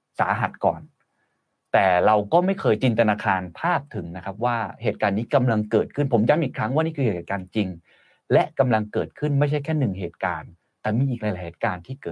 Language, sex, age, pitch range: Thai, male, 30-49, 100-135 Hz